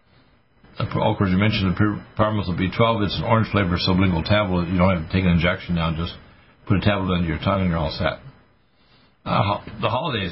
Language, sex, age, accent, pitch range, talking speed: English, male, 60-79, American, 90-105 Hz, 205 wpm